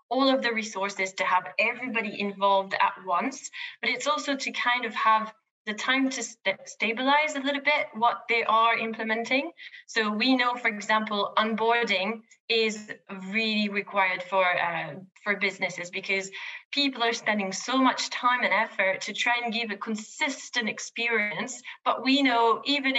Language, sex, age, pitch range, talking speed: English, female, 20-39, 200-255 Hz, 160 wpm